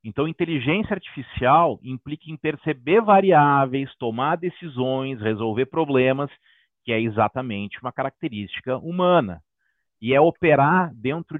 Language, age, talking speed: Portuguese, 40-59, 110 wpm